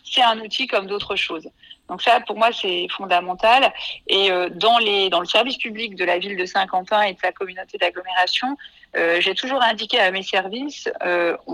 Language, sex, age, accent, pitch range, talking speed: French, female, 40-59, French, 185-240 Hz, 195 wpm